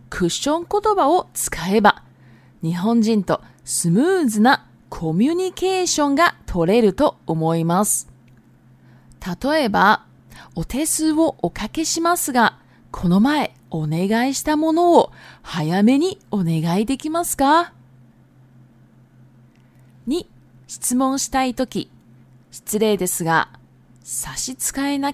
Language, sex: Japanese, female